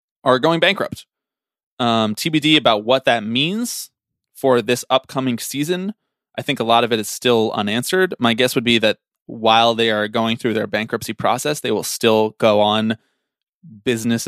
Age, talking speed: 20-39, 170 wpm